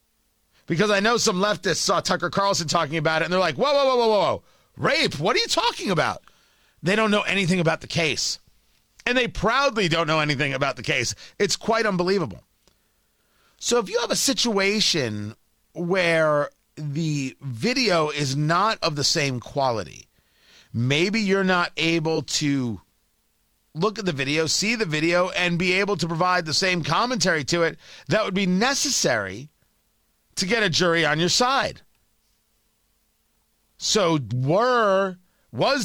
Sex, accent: male, American